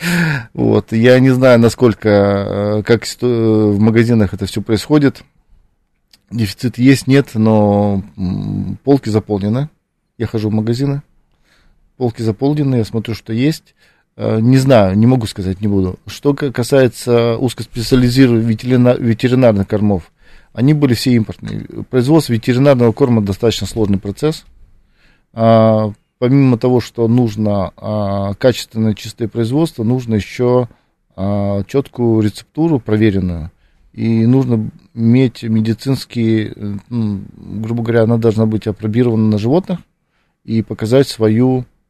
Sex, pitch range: male, 105-130 Hz